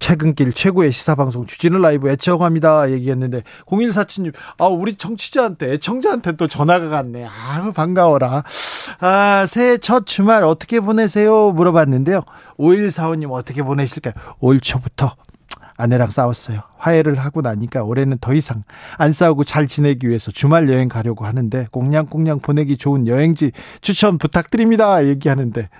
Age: 40-59